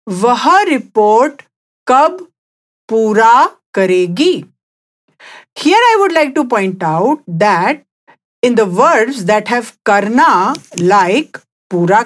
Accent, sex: Indian, female